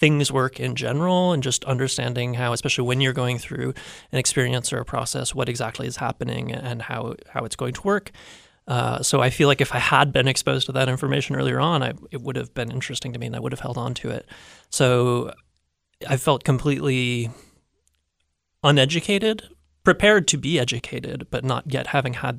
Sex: male